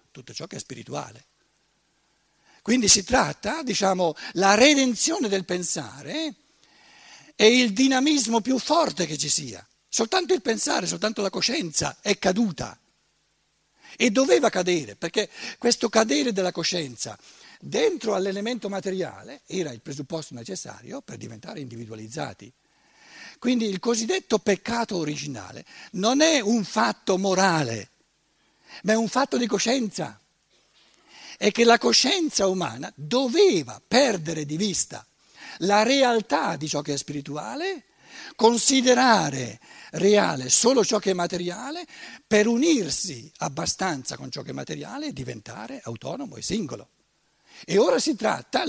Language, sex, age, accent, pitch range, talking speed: Italian, male, 60-79, native, 165-250 Hz, 125 wpm